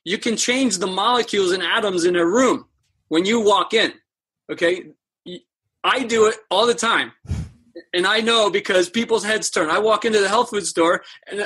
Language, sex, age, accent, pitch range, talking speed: English, male, 30-49, American, 175-235 Hz, 190 wpm